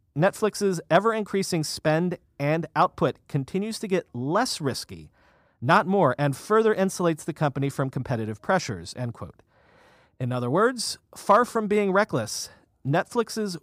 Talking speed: 130 wpm